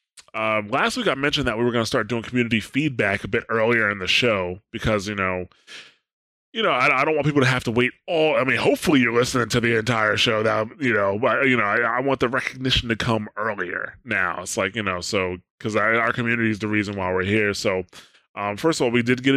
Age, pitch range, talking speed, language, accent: 20-39, 105-135 Hz, 250 wpm, English, American